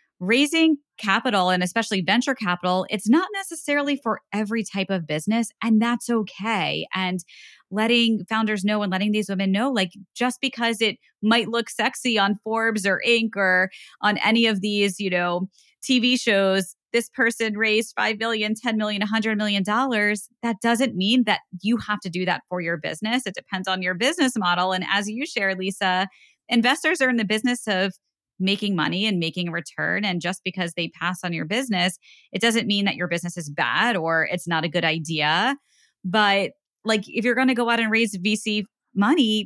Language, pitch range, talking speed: English, 175-225 Hz, 190 wpm